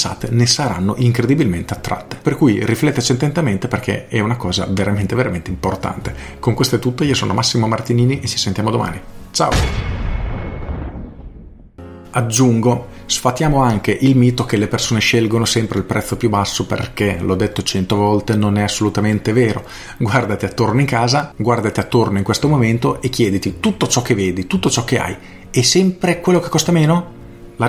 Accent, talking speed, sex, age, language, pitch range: native, 165 wpm, male, 40-59, Italian, 105-130 Hz